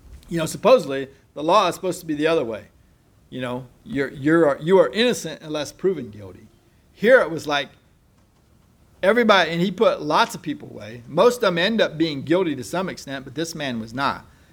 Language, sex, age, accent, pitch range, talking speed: English, male, 40-59, American, 120-165 Hz, 200 wpm